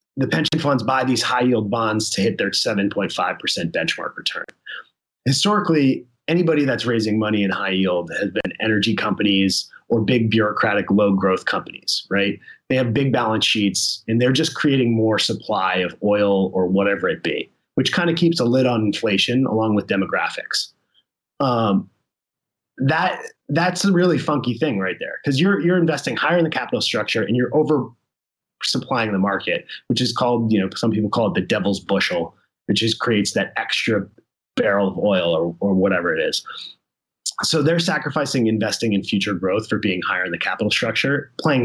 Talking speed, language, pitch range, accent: 175 wpm, English, 100-135 Hz, American